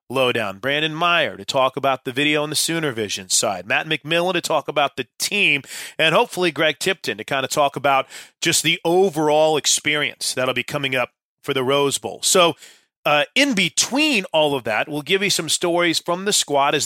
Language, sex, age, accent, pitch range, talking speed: English, male, 30-49, American, 135-185 Hz, 205 wpm